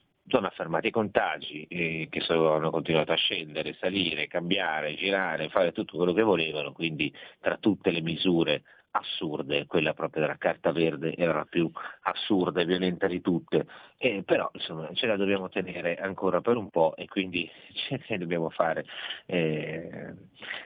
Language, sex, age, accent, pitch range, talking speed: Italian, male, 40-59, native, 80-95 Hz, 160 wpm